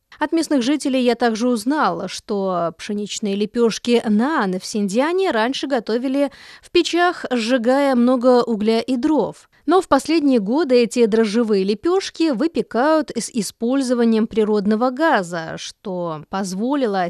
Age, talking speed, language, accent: 30-49, 125 wpm, Russian, native